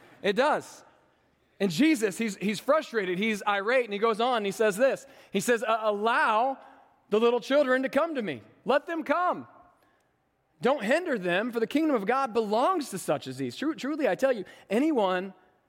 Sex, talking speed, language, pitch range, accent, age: male, 185 wpm, English, 165-235 Hz, American, 30-49